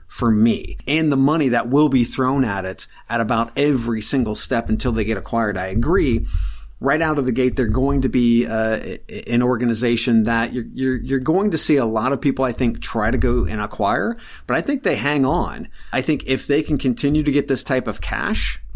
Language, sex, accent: English, male, American